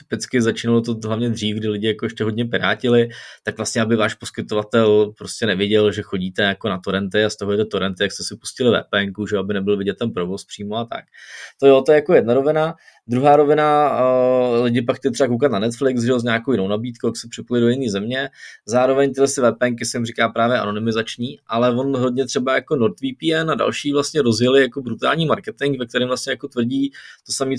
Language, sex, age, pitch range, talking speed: Czech, male, 20-39, 115-135 Hz, 215 wpm